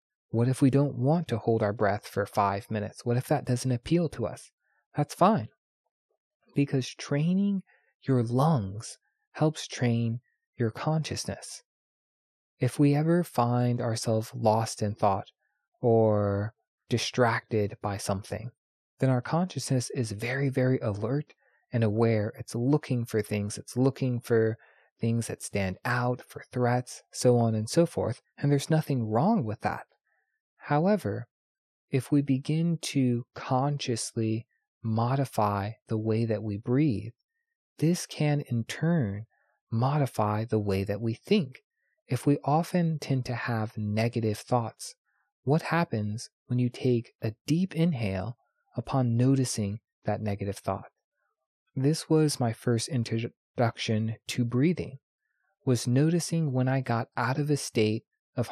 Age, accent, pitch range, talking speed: 20-39, American, 110-145 Hz, 135 wpm